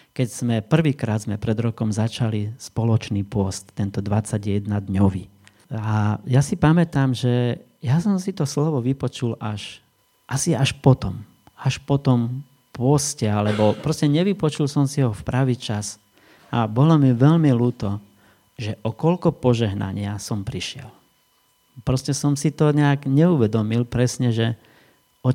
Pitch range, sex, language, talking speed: 110-140 Hz, male, Slovak, 140 wpm